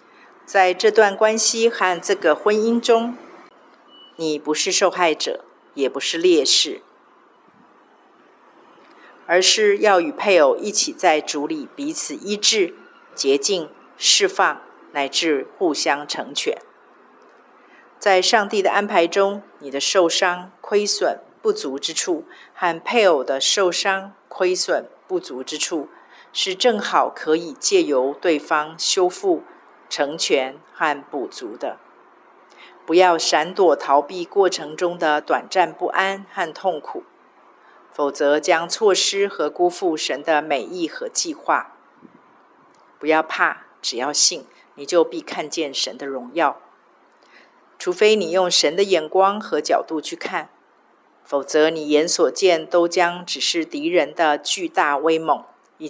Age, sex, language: 50-69, female, Chinese